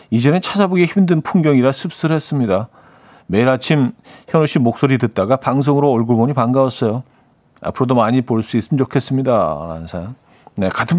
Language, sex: Korean, male